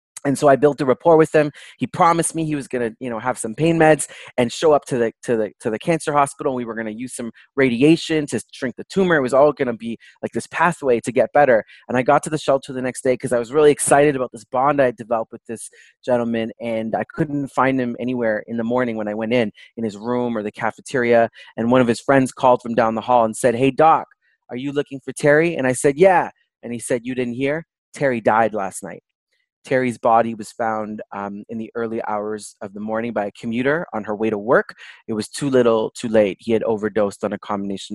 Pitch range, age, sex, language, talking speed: 110-135 Hz, 30-49, male, English, 255 wpm